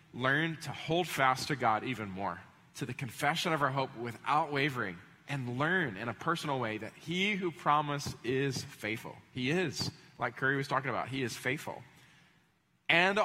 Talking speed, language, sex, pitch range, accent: 175 wpm, English, male, 125-165 Hz, American